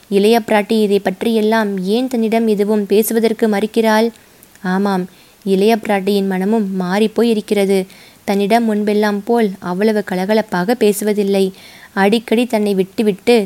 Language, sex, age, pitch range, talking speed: Tamil, female, 20-39, 200-230 Hz, 105 wpm